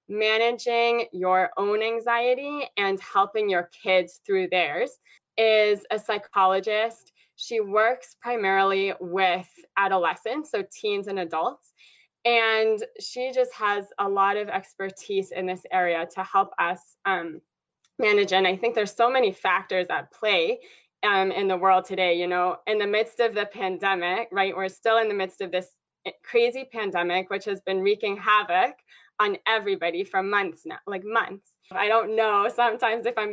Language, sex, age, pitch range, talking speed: English, female, 20-39, 190-230 Hz, 160 wpm